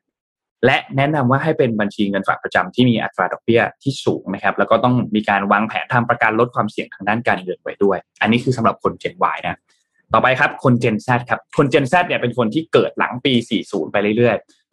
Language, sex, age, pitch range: Thai, male, 20-39, 105-135 Hz